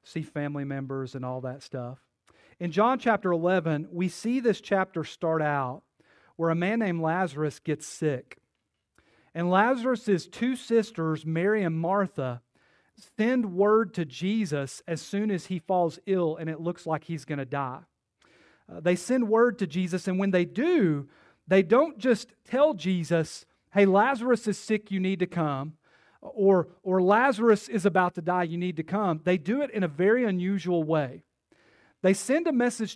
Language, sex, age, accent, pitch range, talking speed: English, male, 40-59, American, 165-210 Hz, 170 wpm